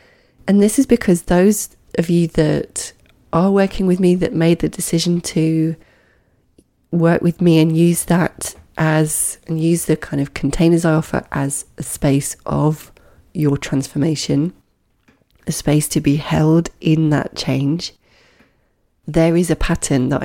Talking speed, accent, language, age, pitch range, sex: 150 wpm, British, English, 30-49, 150-175 Hz, female